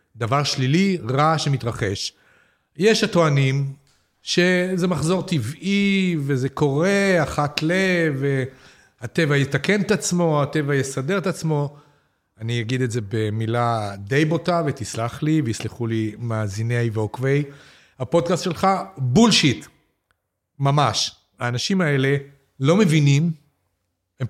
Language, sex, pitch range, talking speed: Hebrew, male, 115-160 Hz, 105 wpm